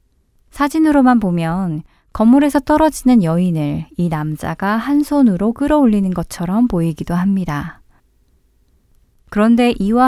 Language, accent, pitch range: Korean, native, 170-245 Hz